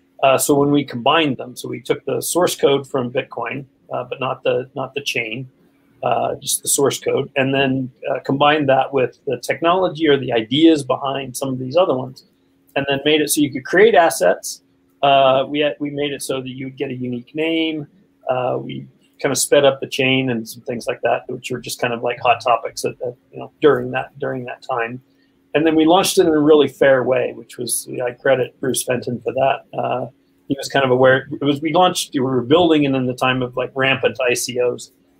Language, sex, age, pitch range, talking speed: English, male, 40-59, 125-145 Hz, 230 wpm